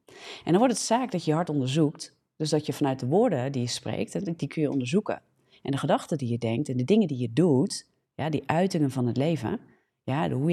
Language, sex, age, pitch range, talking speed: Dutch, female, 40-59, 135-180 Hz, 235 wpm